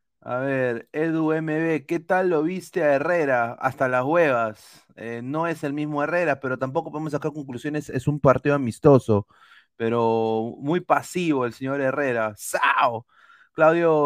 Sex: male